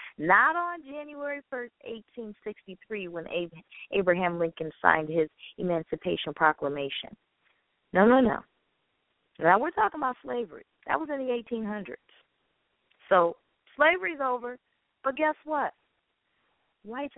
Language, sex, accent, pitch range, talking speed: English, female, American, 210-270 Hz, 110 wpm